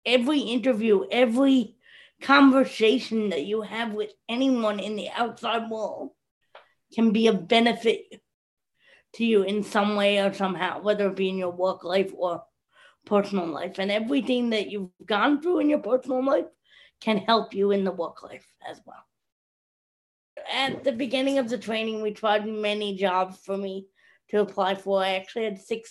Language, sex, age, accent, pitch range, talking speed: English, female, 20-39, American, 195-230 Hz, 165 wpm